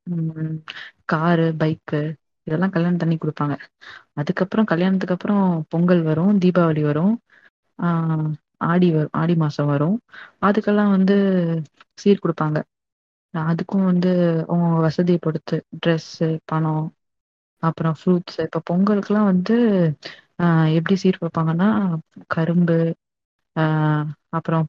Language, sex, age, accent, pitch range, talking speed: Tamil, female, 20-39, native, 160-180 Hz, 90 wpm